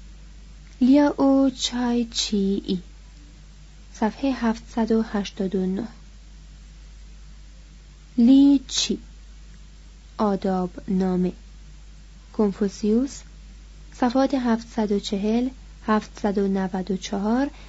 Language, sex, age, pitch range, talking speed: Persian, female, 30-49, 195-235 Hz, 45 wpm